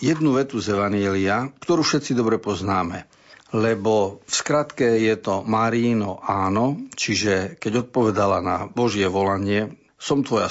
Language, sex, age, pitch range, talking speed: Slovak, male, 50-69, 105-135 Hz, 130 wpm